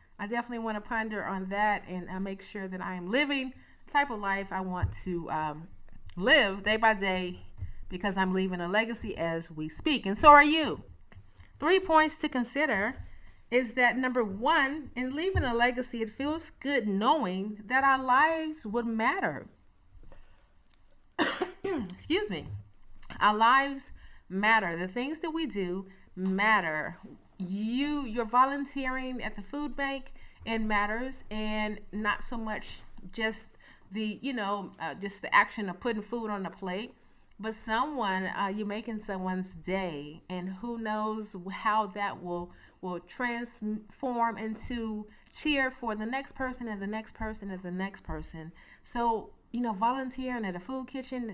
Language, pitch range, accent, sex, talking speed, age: English, 190-250 Hz, American, female, 160 wpm, 30-49